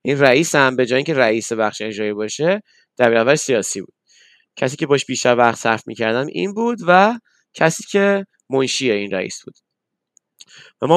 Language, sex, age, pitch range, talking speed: Persian, male, 20-39, 125-170 Hz, 180 wpm